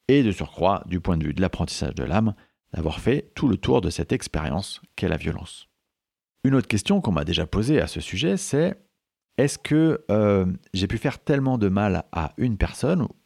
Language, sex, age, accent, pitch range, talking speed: French, male, 40-59, French, 85-120 Hz, 205 wpm